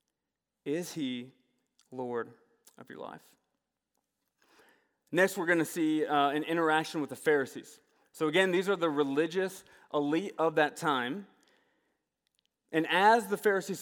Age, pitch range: 30-49, 145-185 Hz